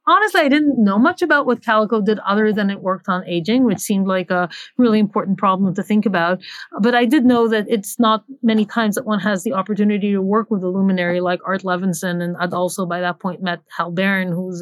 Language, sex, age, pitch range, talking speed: English, female, 30-49, 190-225 Hz, 235 wpm